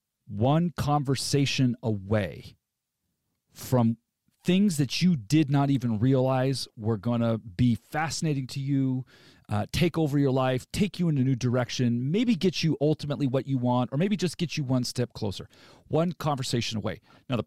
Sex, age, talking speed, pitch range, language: male, 40-59, 170 wpm, 120-155 Hz, English